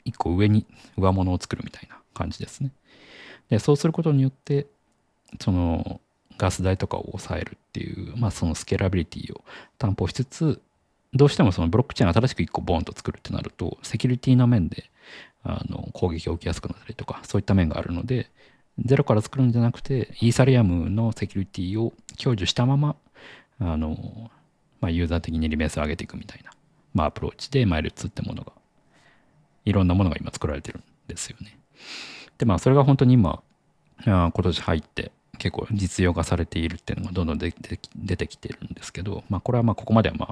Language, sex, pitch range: Japanese, male, 85-125 Hz